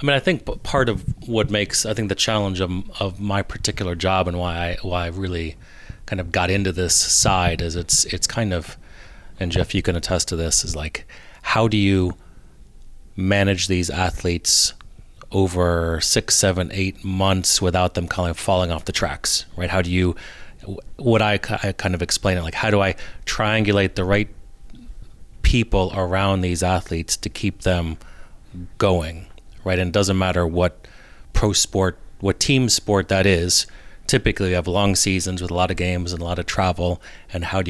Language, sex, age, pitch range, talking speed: English, male, 30-49, 85-100 Hz, 190 wpm